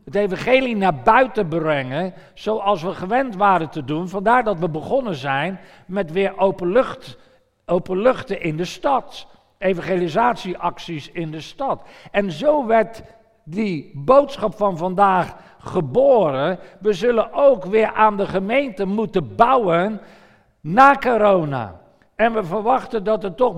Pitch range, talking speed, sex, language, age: 180-225 Hz, 130 wpm, male, Dutch, 50-69